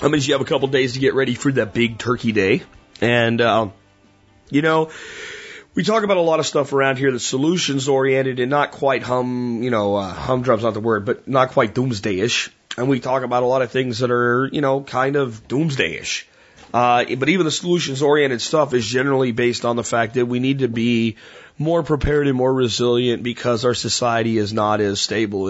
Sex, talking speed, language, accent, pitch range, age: male, 215 wpm, English, American, 115-135 Hz, 30-49